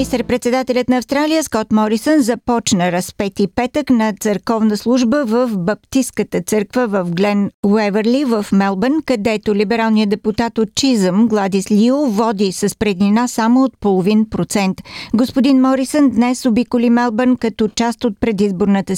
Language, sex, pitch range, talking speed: Bulgarian, female, 205-250 Hz, 140 wpm